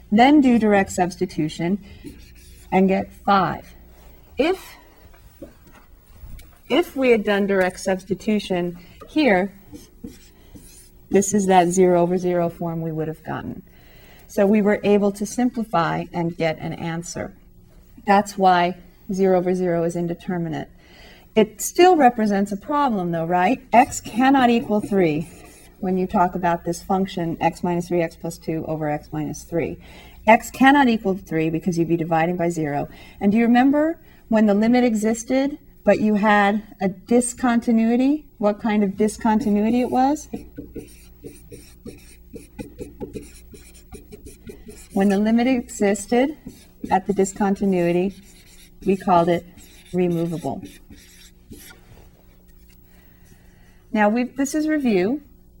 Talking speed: 125 wpm